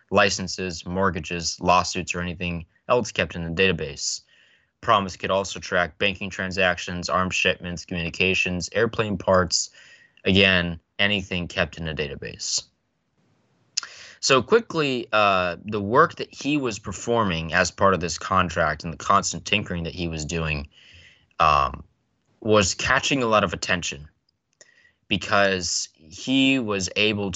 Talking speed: 130 wpm